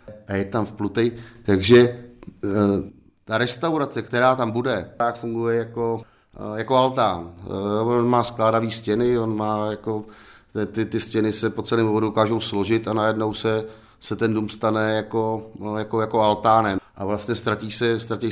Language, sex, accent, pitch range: Czech, male, native, 105-120 Hz